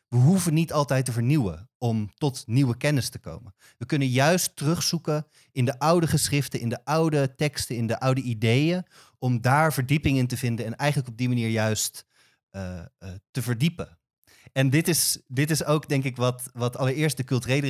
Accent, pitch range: Dutch, 120-145 Hz